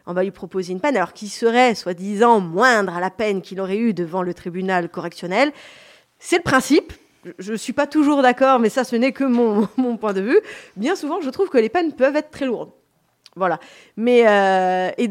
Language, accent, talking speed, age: French, French, 220 wpm, 20-39